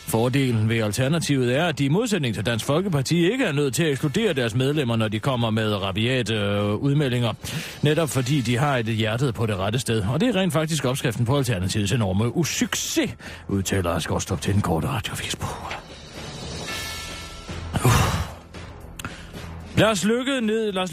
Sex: male